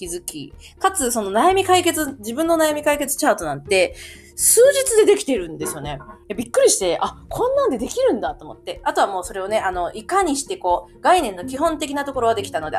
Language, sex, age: Japanese, female, 20-39